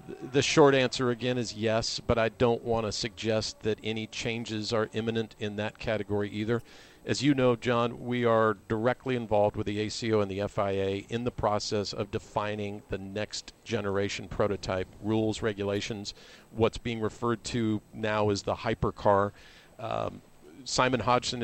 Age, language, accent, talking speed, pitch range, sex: 50-69, English, American, 155 wpm, 105-120 Hz, male